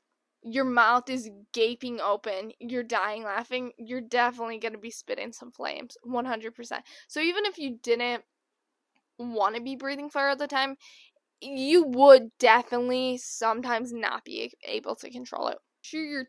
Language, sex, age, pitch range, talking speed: English, female, 10-29, 230-315 Hz, 150 wpm